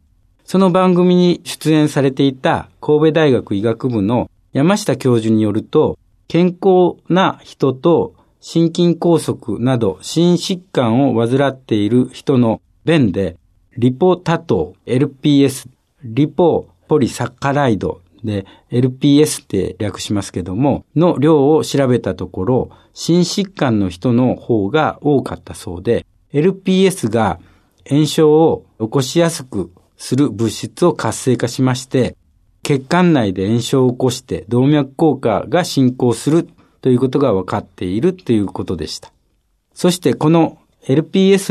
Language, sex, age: Japanese, male, 60-79